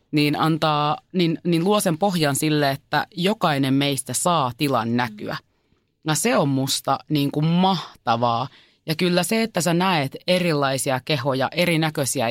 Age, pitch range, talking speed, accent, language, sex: 30-49, 140-165 Hz, 145 wpm, native, Finnish, female